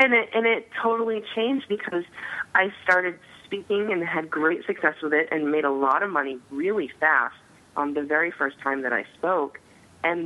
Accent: American